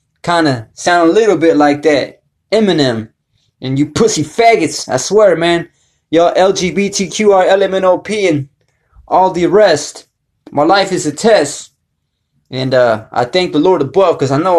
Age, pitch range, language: 20-39, 145-185 Hz, English